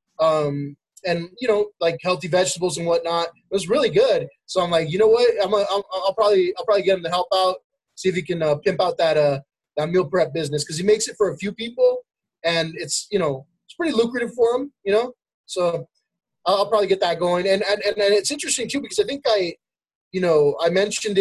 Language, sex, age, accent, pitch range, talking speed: English, male, 20-39, American, 170-220 Hz, 235 wpm